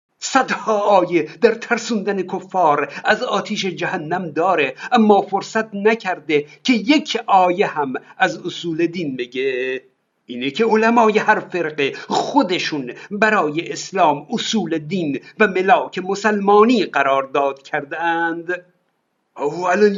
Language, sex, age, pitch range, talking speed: Persian, male, 50-69, 165-225 Hz, 115 wpm